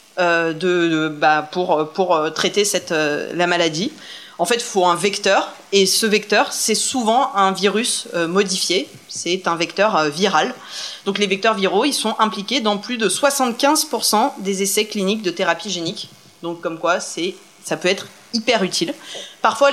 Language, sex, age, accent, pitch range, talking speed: French, female, 20-39, French, 190-260 Hz, 180 wpm